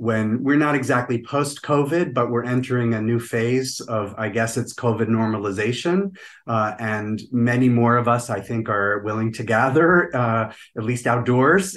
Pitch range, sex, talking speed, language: 110-130 Hz, male, 170 wpm, English